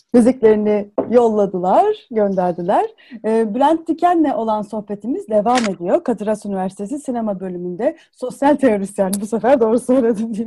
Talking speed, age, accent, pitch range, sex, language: 120 wpm, 30-49, native, 210-275 Hz, female, Turkish